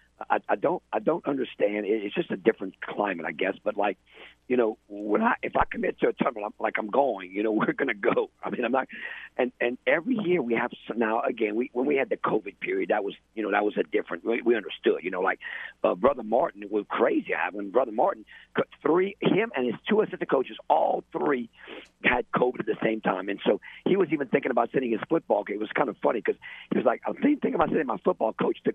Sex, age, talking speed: male, 50-69, 255 wpm